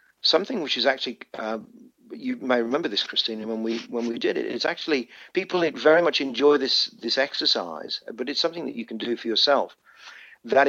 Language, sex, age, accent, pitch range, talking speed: English, male, 50-69, British, 115-145 Hz, 195 wpm